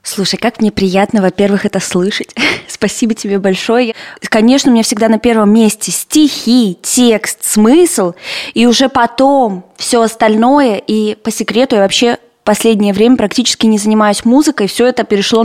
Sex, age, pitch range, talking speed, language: female, 20-39, 195-235 Hz, 155 wpm, Russian